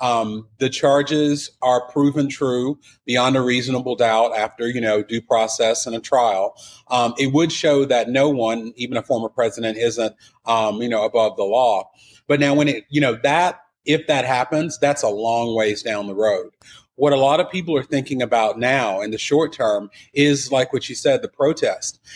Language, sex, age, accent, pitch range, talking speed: English, male, 40-59, American, 115-145 Hz, 200 wpm